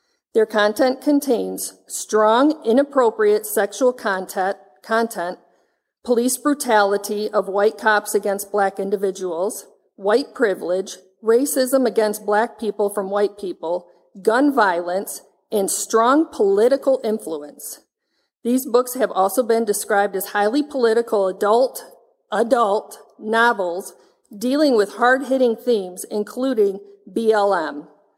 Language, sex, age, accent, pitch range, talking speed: English, female, 50-69, American, 200-255 Hz, 105 wpm